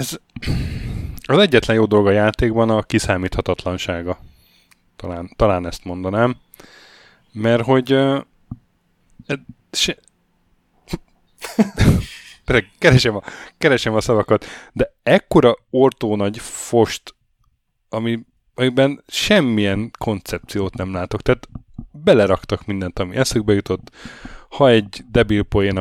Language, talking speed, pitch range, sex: Hungarian, 100 wpm, 95-115 Hz, male